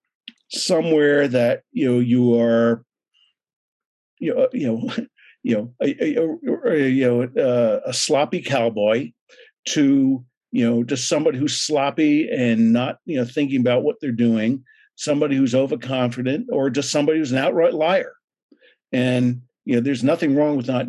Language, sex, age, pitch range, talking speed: English, male, 50-69, 115-145 Hz, 145 wpm